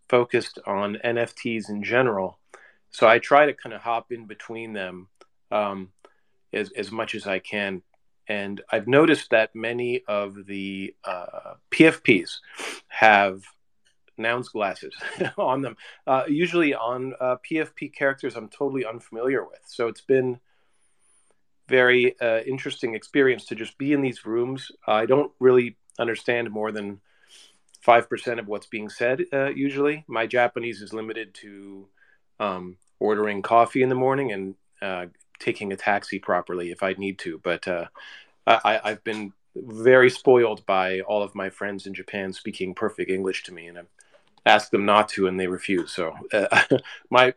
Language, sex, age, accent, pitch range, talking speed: English, male, 40-59, American, 100-125 Hz, 160 wpm